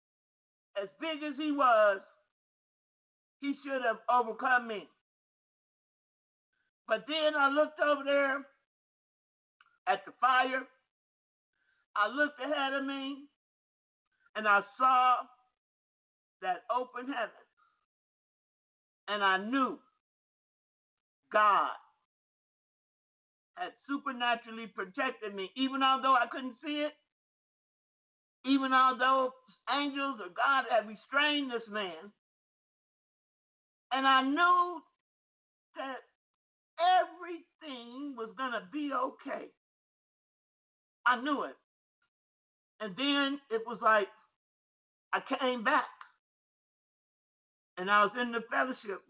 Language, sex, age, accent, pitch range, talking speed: English, male, 50-69, American, 220-285 Hz, 100 wpm